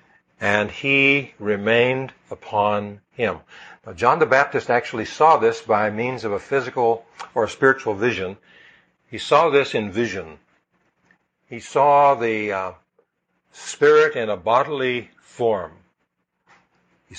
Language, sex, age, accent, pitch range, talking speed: English, male, 60-79, American, 105-140 Hz, 125 wpm